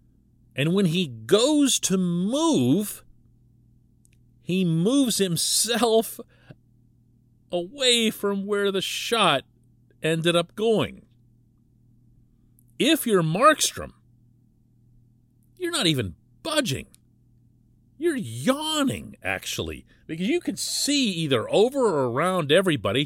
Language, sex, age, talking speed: English, male, 40-59, 95 wpm